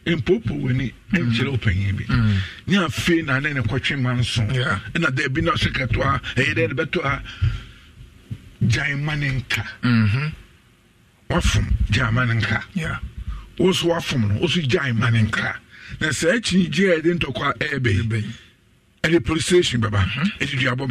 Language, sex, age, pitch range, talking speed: English, male, 50-69, 115-170 Hz, 60 wpm